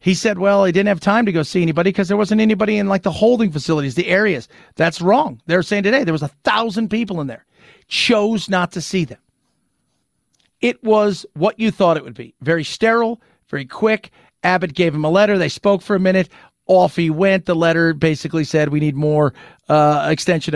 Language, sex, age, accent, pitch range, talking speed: English, male, 40-59, American, 150-210 Hz, 215 wpm